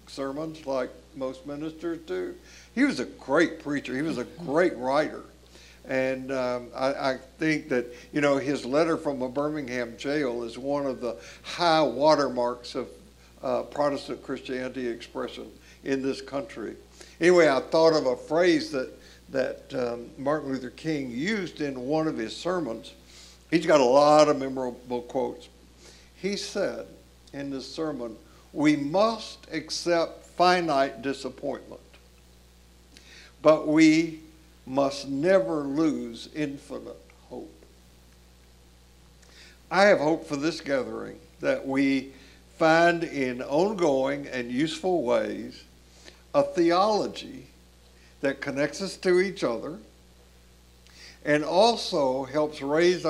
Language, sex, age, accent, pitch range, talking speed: English, male, 60-79, American, 115-155 Hz, 125 wpm